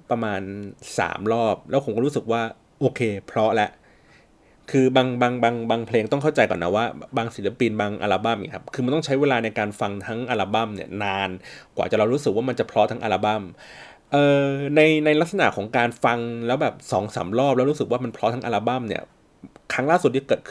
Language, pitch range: Thai, 110-150 Hz